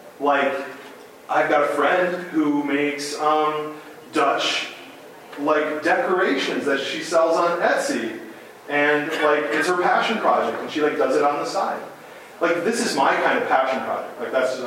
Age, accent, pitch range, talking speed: 30-49, American, 135-180 Hz, 170 wpm